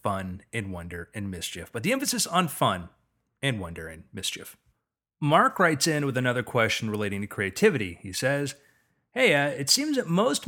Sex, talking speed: male, 180 wpm